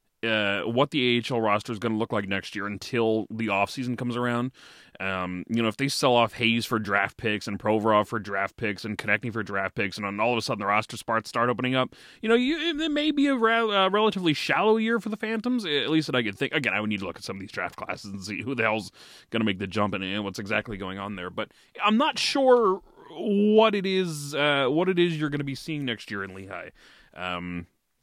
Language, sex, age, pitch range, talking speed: English, male, 30-49, 95-130 Hz, 260 wpm